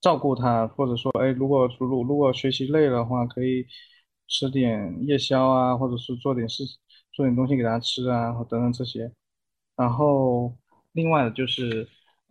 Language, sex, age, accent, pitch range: Chinese, male, 20-39, native, 120-140 Hz